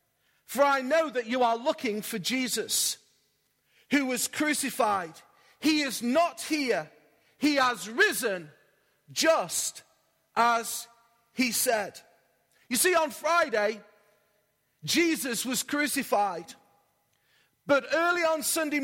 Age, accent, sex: 40-59, British, male